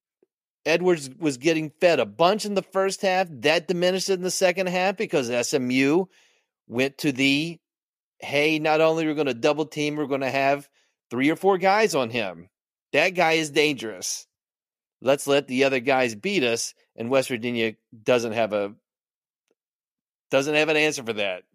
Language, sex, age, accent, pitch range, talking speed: English, male, 30-49, American, 140-190 Hz, 170 wpm